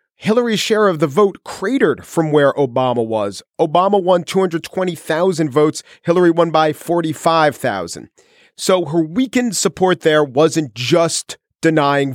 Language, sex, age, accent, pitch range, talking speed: English, male, 40-59, American, 140-195 Hz, 130 wpm